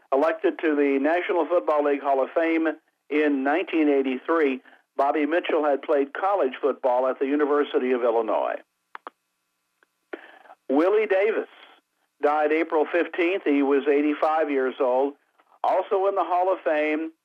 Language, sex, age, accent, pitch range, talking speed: English, male, 50-69, American, 140-175 Hz, 130 wpm